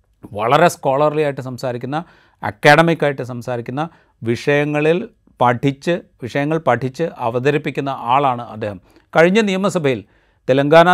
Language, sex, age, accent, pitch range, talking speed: Malayalam, male, 40-59, native, 125-165 Hz, 95 wpm